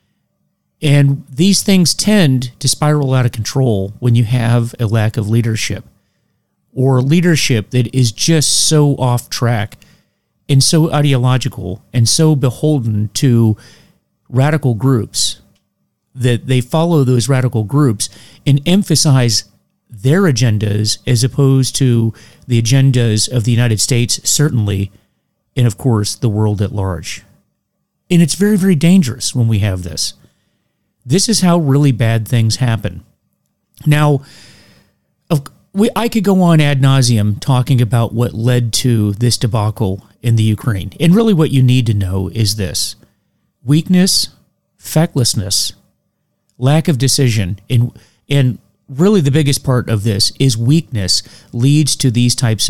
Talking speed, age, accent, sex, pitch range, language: 135 wpm, 40-59, American, male, 110-145 Hz, English